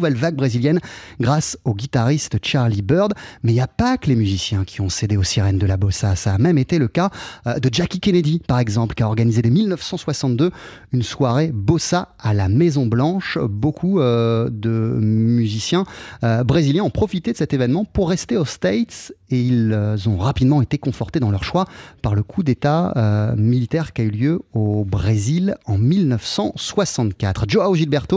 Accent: French